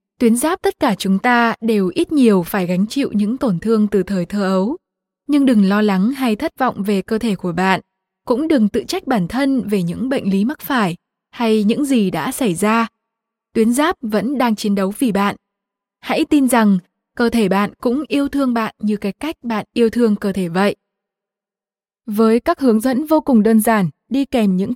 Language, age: Vietnamese, 20-39